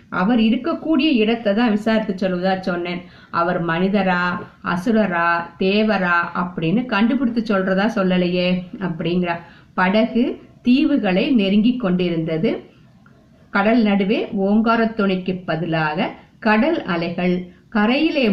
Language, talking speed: Tamil, 90 wpm